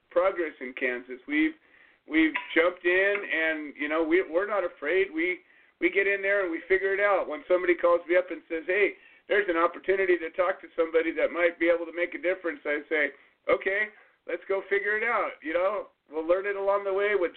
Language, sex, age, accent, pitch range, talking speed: English, male, 50-69, American, 165-200 Hz, 220 wpm